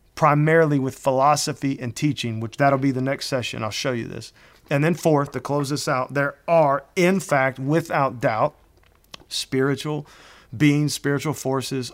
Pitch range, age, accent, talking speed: 125-160 Hz, 40-59, American, 160 wpm